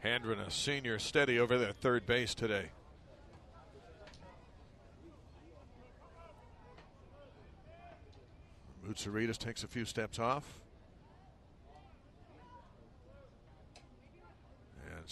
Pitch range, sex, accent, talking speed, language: 100-130 Hz, male, American, 65 wpm, English